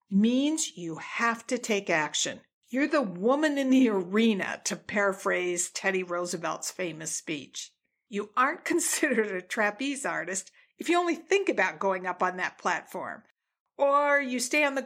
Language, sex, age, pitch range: English, female, 50-69, 185-260 Hz